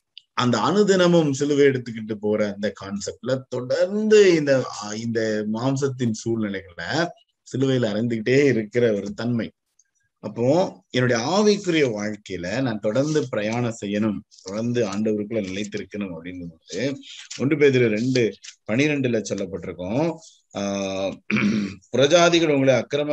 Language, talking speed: Tamil, 95 wpm